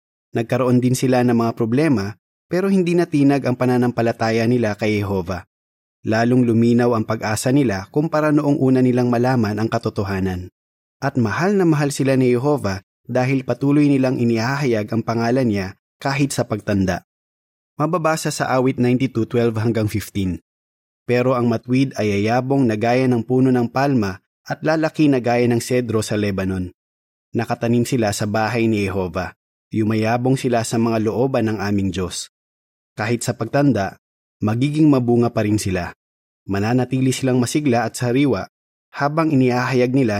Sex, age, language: male, 20-39, Filipino